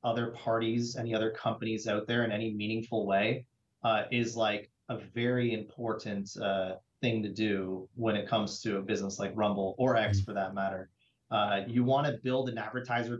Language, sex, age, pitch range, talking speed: English, male, 30-49, 110-130 Hz, 185 wpm